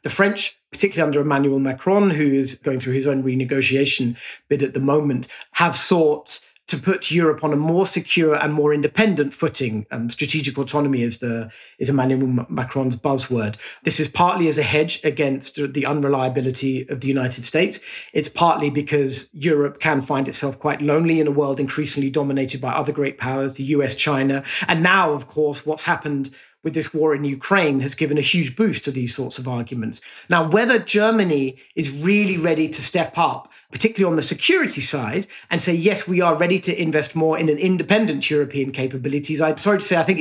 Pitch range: 140-170 Hz